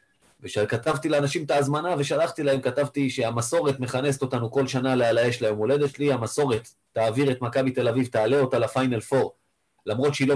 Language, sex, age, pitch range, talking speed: Hebrew, male, 30-49, 115-140 Hz, 175 wpm